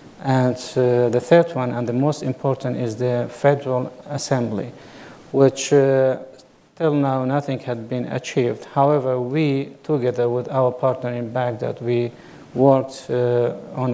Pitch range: 120-135 Hz